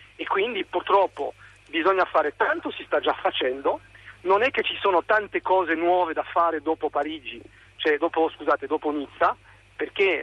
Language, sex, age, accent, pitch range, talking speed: Italian, male, 40-59, native, 145-185 Hz, 165 wpm